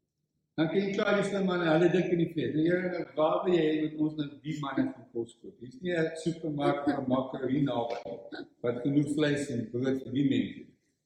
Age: 60-79